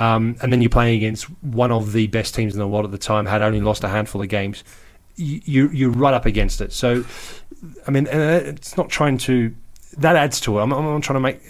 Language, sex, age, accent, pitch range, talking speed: English, male, 30-49, British, 105-125 Hz, 250 wpm